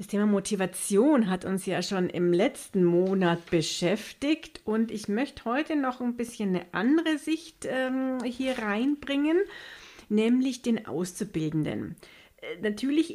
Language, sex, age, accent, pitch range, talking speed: German, female, 50-69, German, 180-240 Hz, 130 wpm